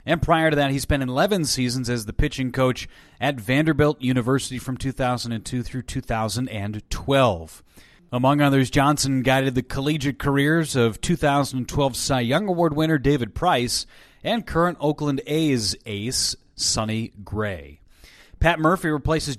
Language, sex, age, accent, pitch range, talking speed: English, male, 30-49, American, 120-145 Hz, 135 wpm